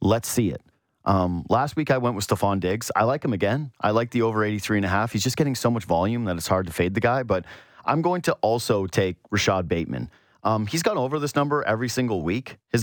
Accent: American